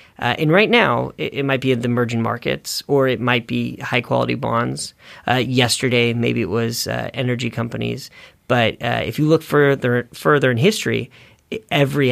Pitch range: 115-140 Hz